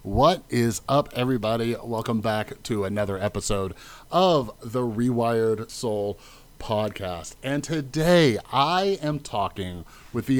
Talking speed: 120 wpm